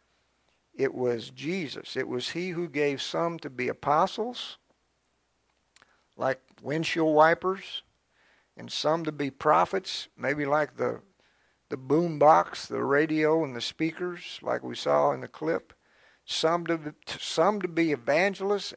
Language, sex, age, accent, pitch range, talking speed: English, male, 50-69, American, 145-190 Hz, 140 wpm